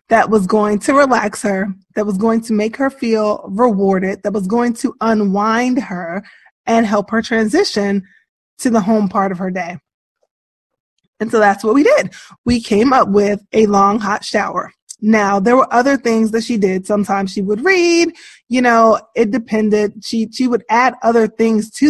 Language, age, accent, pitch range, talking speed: English, 20-39, American, 200-250 Hz, 185 wpm